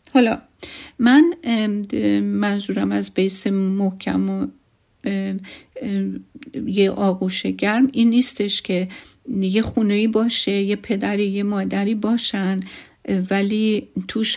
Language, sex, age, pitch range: Persian, female, 50-69, 190-220 Hz